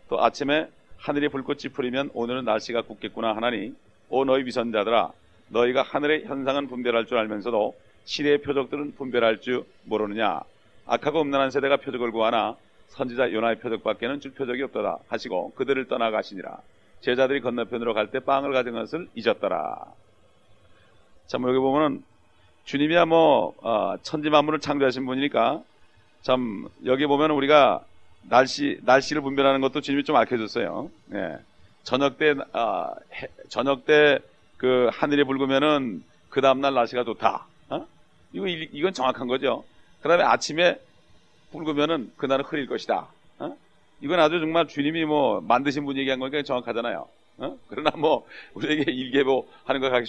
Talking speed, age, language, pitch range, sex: 130 wpm, 40-59, English, 120-145 Hz, male